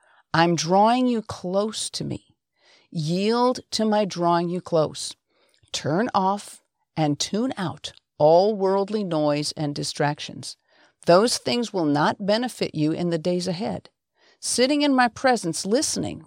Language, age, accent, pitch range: English, 50-69, American, 155-225 Hz